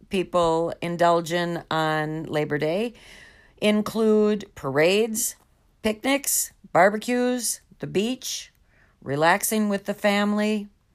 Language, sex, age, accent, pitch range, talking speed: English, female, 50-69, American, 150-225 Hz, 90 wpm